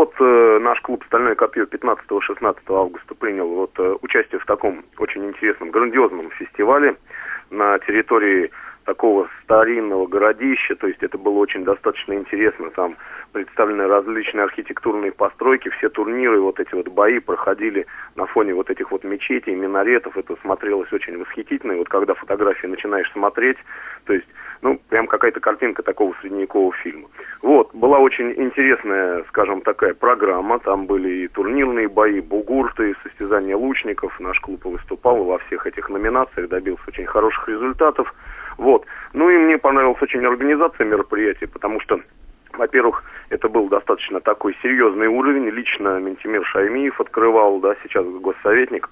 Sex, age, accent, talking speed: male, 30-49, native, 140 wpm